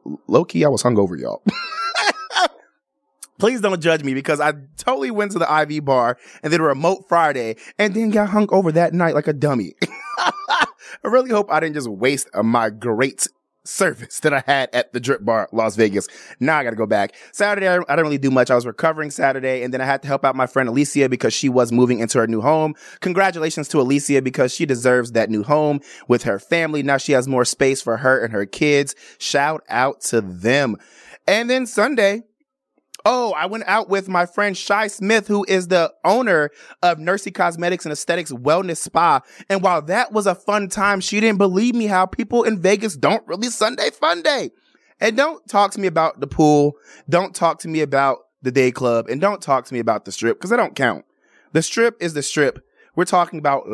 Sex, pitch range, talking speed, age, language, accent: male, 135-200 Hz, 210 wpm, 30-49, English, American